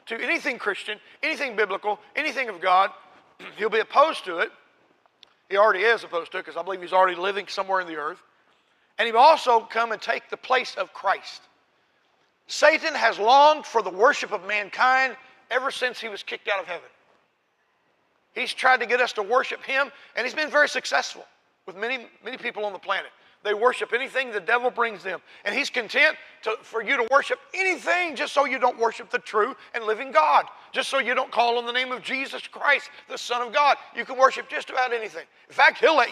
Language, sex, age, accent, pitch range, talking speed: English, male, 40-59, American, 215-270 Hz, 205 wpm